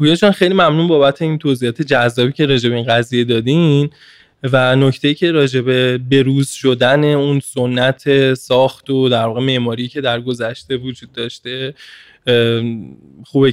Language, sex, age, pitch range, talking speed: Persian, male, 10-29, 125-140 Hz, 135 wpm